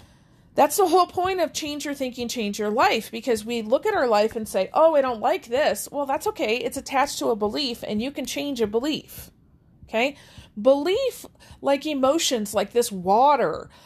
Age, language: 40-59, English